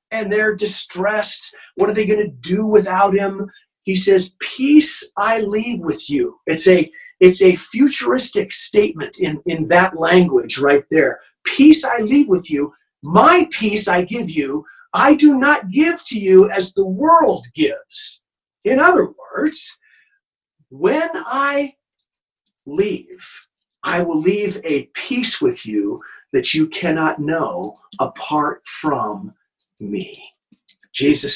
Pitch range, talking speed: 190-320 Hz, 135 wpm